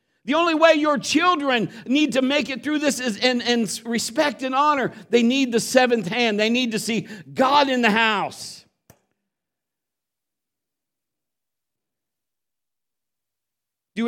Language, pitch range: English, 195-235 Hz